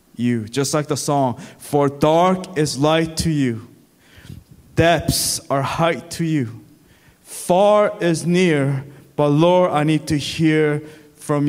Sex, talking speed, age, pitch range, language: male, 135 wpm, 20-39, 135-170 Hz, English